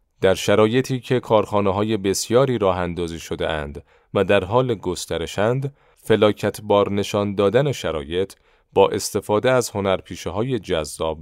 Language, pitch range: Persian, 90-115 Hz